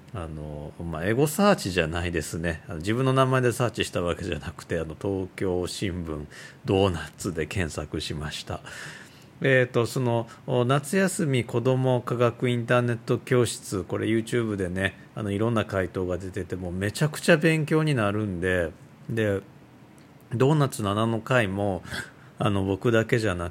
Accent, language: native, Japanese